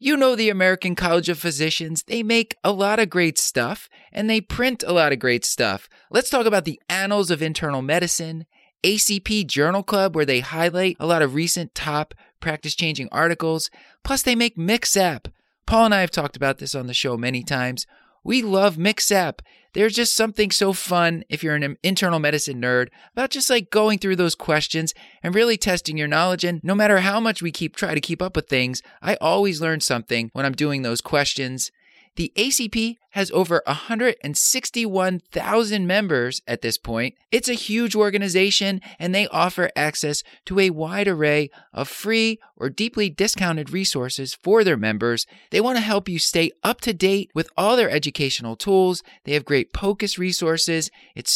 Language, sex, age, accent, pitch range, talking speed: English, male, 30-49, American, 150-205 Hz, 185 wpm